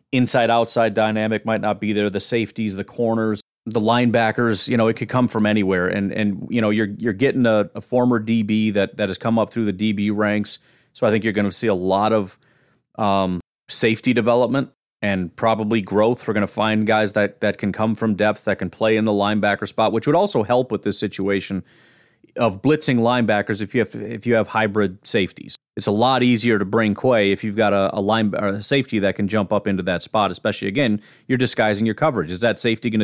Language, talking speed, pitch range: English, 225 wpm, 105-120 Hz